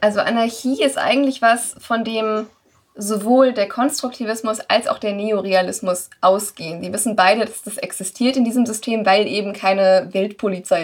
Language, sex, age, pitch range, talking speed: German, female, 20-39, 190-220 Hz, 155 wpm